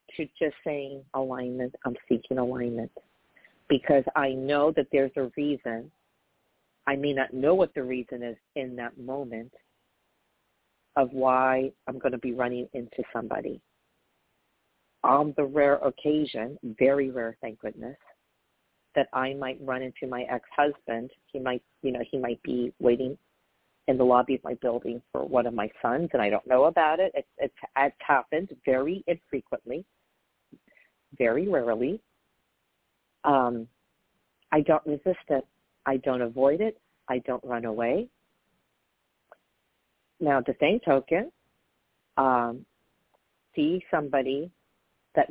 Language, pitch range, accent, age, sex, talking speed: English, 125-145 Hz, American, 40-59, female, 135 wpm